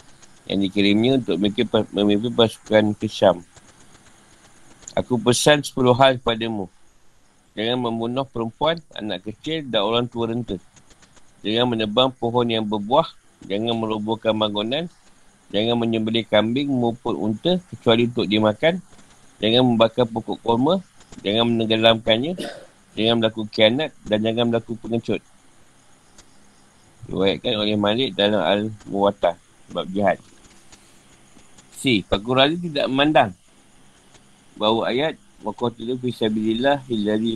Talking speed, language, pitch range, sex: 105 wpm, Malay, 100-120 Hz, male